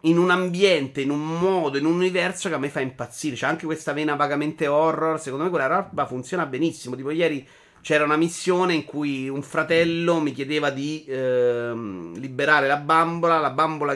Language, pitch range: Italian, 130-165 Hz